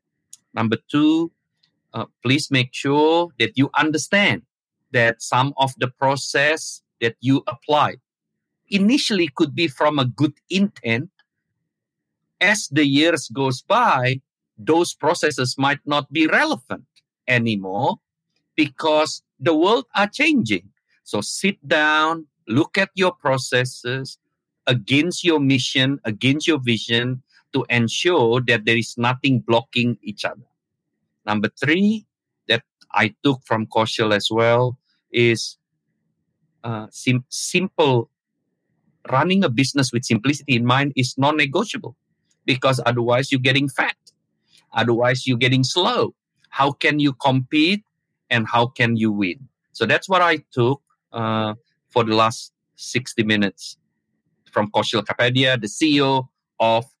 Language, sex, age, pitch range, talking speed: English, male, 50-69, 120-155 Hz, 125 wpm